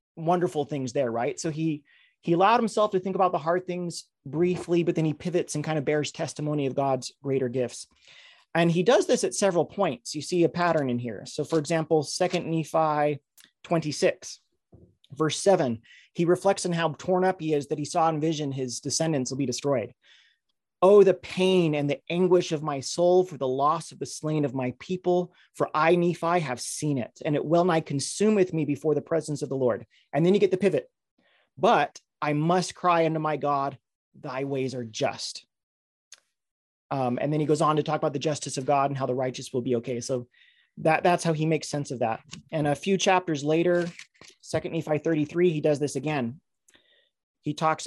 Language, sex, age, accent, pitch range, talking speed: English, male, 30-49, American, 140-175 Hz, 205 wpm